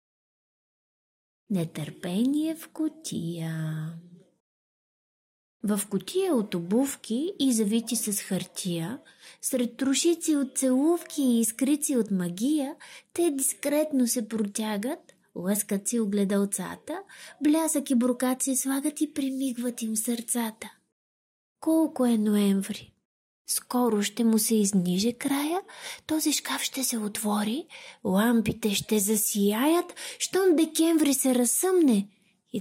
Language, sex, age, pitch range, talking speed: Bulgarian, female, 20-39, 205-295 Hz, 105 wpm